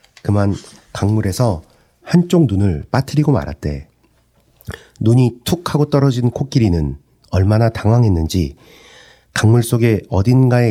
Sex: male